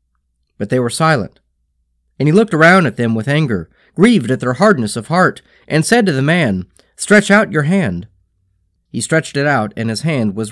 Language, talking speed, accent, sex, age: English, 200 wpm, American, male, 40-59